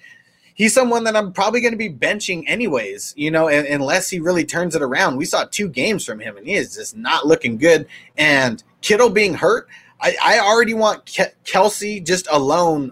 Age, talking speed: 30-49, 195 wpm